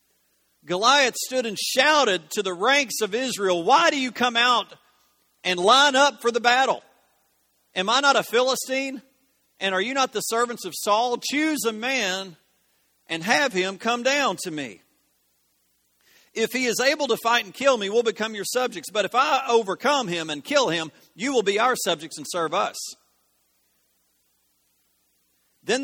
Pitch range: 180-250 Hz